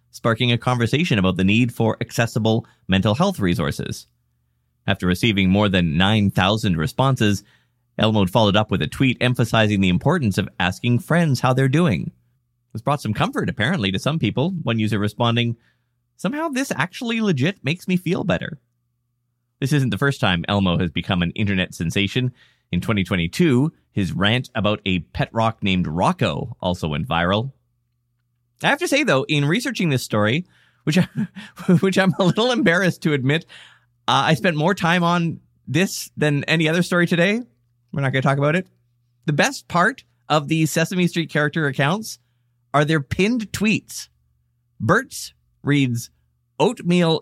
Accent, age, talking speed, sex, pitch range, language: American, 30-49, 165 wpm, male, 105-160 Hz, English